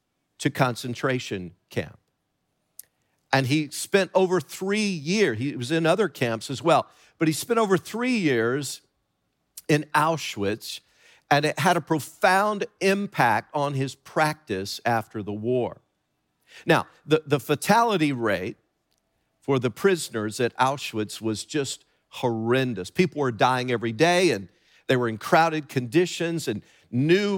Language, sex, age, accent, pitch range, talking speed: English, male, 50-69, American, 130-175 Hz, 135 wpm